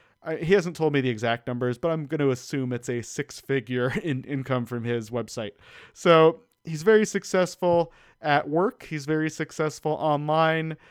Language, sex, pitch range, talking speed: English, male, 135-165 Hz, 165 wpm